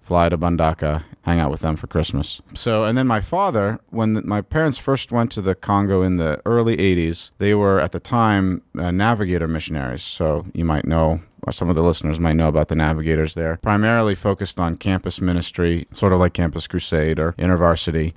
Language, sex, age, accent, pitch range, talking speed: English, male, 40-59, American, 85-105 Hz, 200 wpm